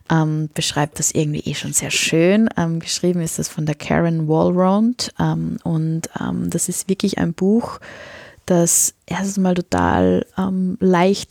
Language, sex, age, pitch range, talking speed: German, female, 20-39, 160-195 Hz, 160 wpm